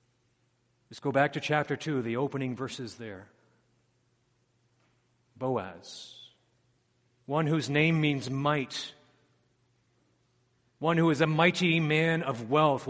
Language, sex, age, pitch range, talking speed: English, male, 40-59, 120-170 Hz, 110 wpm